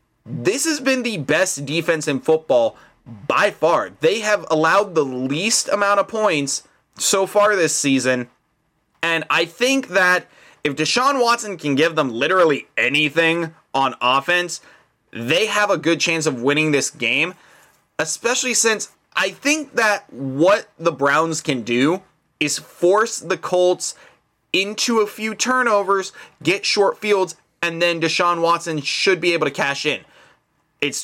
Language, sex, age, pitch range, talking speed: English, male, 20-39, 150-195 Hz, 150 wpm